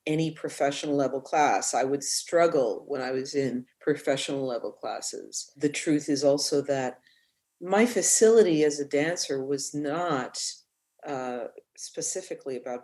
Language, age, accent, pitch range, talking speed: English, 40-59, American, 135-160 Hz, 135 wpm